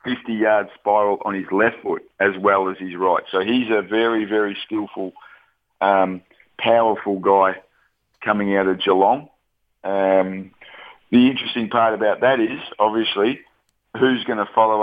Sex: male